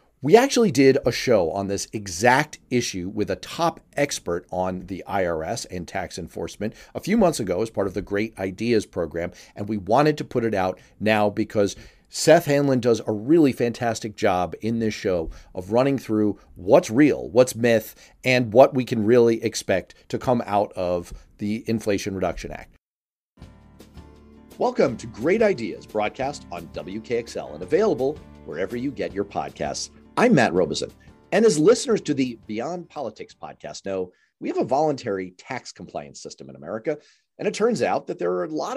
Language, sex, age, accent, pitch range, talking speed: English, male, 40-59, American, 100-155 Hz, 175 wpm